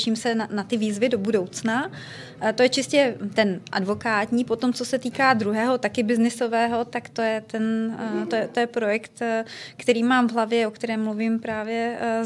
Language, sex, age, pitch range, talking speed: Czech, female, 20-39, 215-235 Hz, 195 wpm